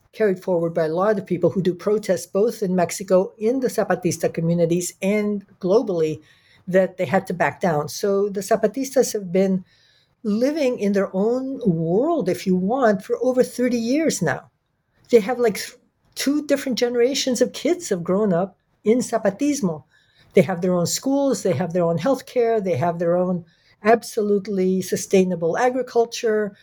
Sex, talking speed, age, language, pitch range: female, 170 wpm, 60-79, English, 180-235 Hz